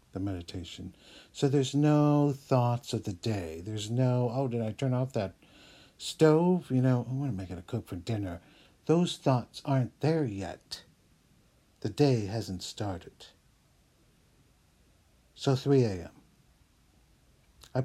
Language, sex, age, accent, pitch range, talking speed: English, male, 60-79, American, 95-135 Hz, 140 wpm